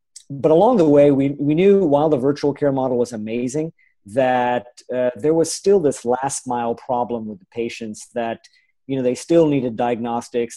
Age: 40-59